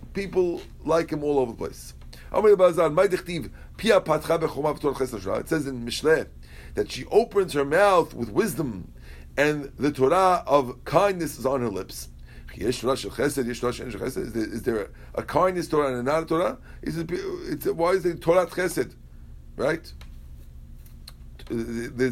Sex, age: male, 50-69